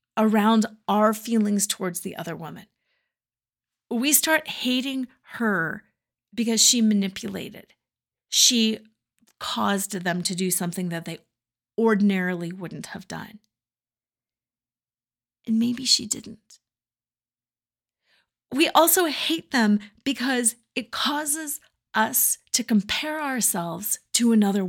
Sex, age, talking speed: female, 30-49, 105 wpm